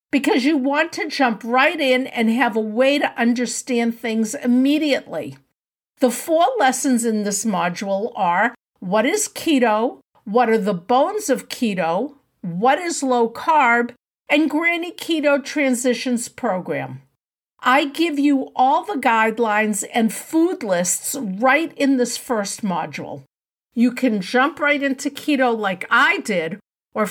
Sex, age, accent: female, 50-69, American